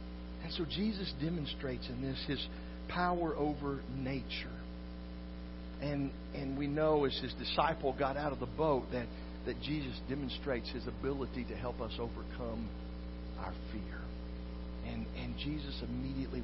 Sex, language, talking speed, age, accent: male, English, 140 wpm, 50-69, American